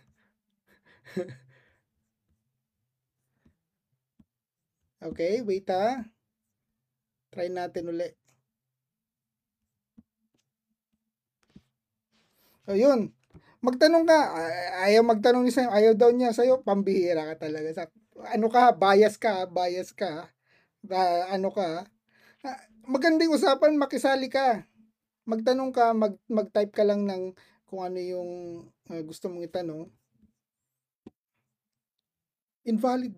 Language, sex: Filipino, male